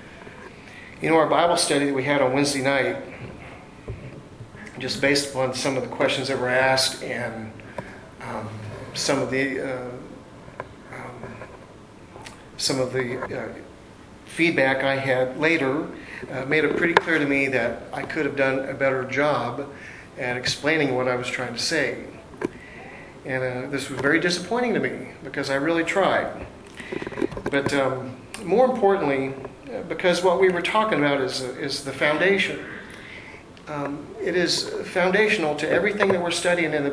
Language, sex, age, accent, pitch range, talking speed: English, male, 40-59, American, 130-150 Hz, 155 wpm